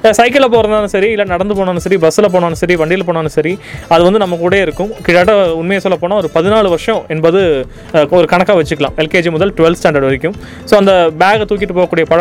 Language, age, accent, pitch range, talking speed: Tamil, 20-39, native, 155-195 Hz, 190 wpm